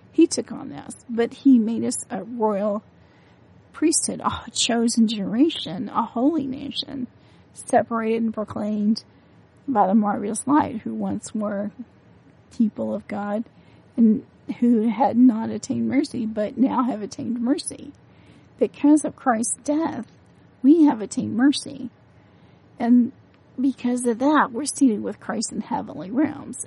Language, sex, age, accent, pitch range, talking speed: English, female, 40-59, American, 220-265 Hz, 135 wpm